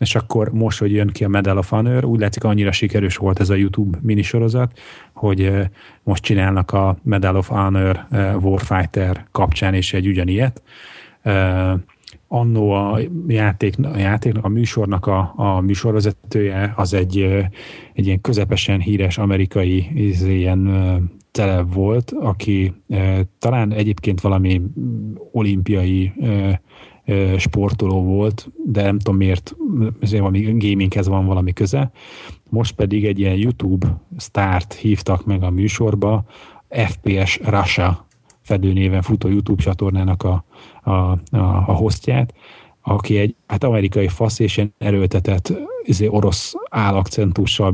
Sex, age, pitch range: male, 30-49, 95-110 Hz